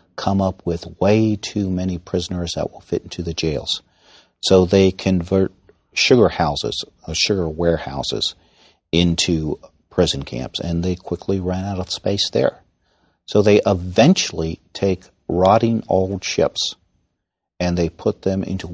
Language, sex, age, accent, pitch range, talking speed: English, male, 50-69, American, 85-95 Hz, 140 wpm